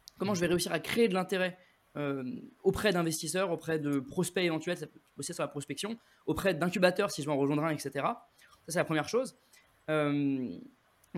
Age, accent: 20-39, French